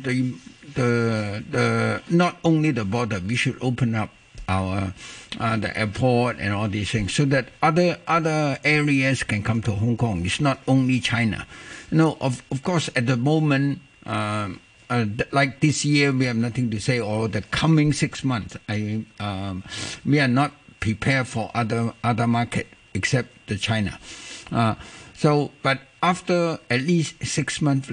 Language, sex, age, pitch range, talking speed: English, male, 60-79, 110-145 Hz, 170 wpm